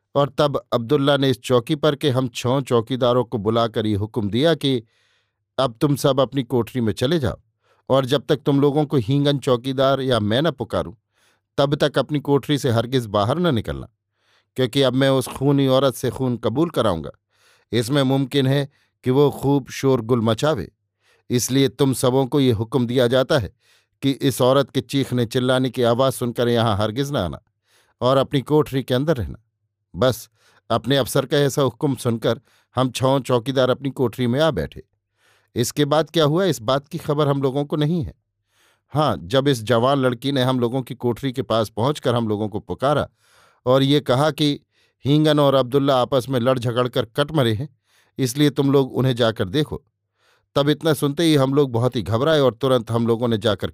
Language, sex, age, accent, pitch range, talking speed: Hindi, male, 50-69, native, 115-140 Hz, 195 wpm